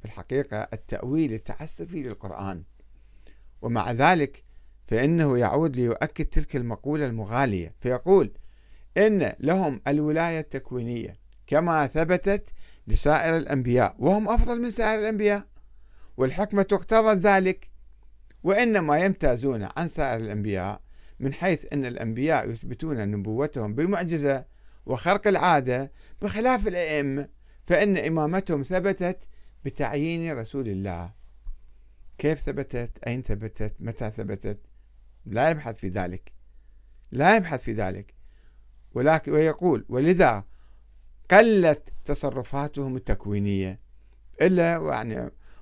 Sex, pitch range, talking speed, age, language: male, 110-175 Hz, 95 wpm, 50-69, Arabic